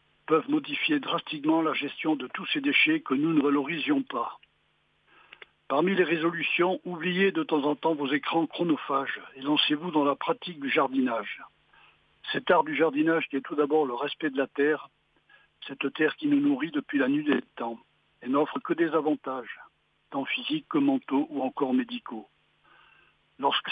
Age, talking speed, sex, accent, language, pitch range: 60-79, 170 wpm, male, French, French, 145-205 Hz